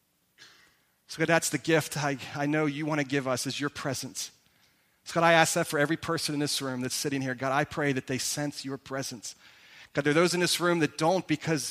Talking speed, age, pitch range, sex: 245 wpm, 40-59, 140-170 Hz, male